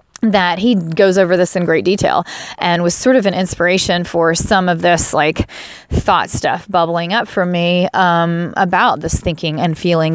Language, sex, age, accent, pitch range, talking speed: English, female, 30-49, American, 175-205 Hz, 185 wpm